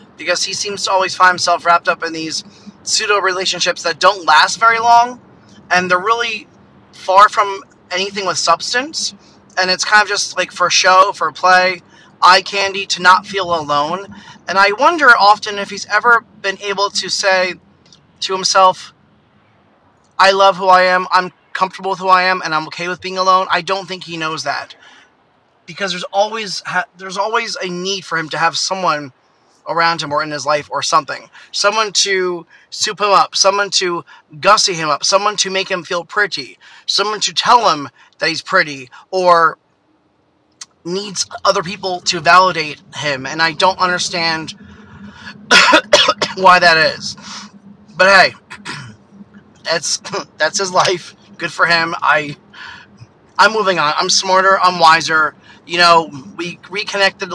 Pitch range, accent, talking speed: 170-195 Hz, American, 160 wpm